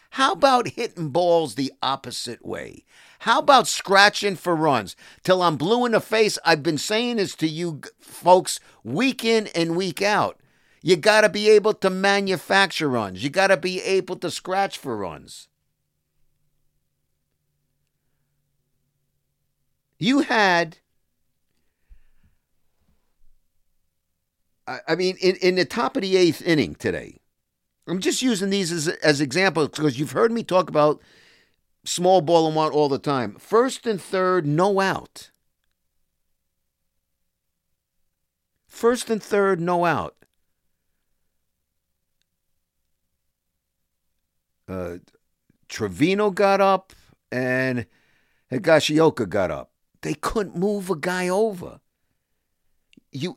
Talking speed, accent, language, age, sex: 120 wpm, American, English, 50-69, male